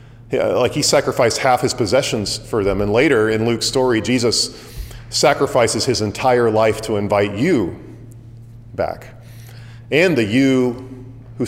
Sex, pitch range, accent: male, 110-125 Hz, American